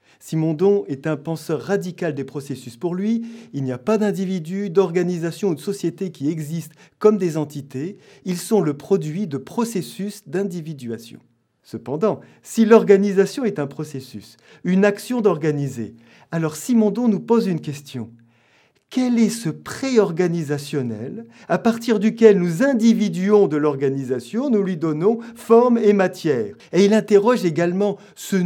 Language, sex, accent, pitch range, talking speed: French, male, French, 145-210 Hz, 140 wpm